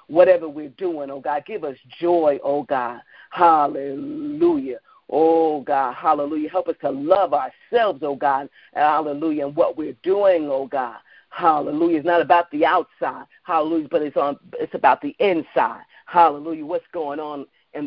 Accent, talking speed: American, 155 wpm